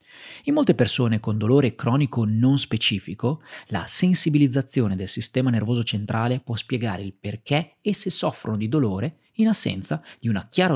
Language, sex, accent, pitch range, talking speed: Italian, male, native, 110-160 Hz, 150 wpm